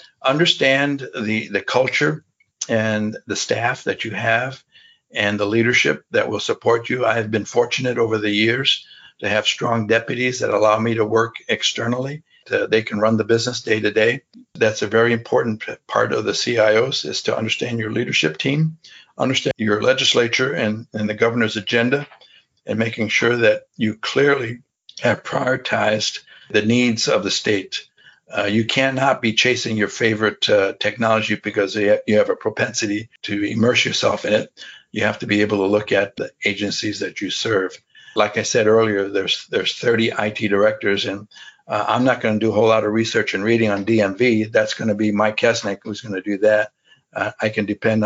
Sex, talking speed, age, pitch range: male, 185 wpm, 60-79, 105-120 Hz